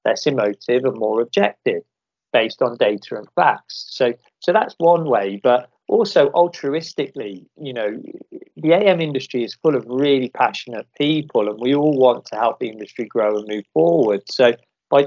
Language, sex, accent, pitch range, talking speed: English, male, British, 115-155 Hz, 170 wpm